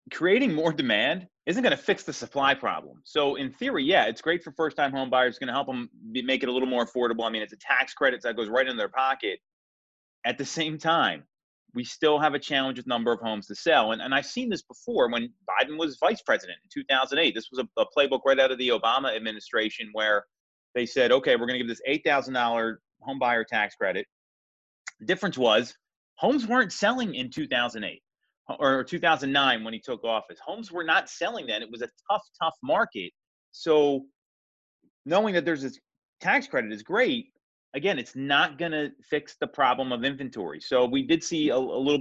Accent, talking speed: American, 210 wpm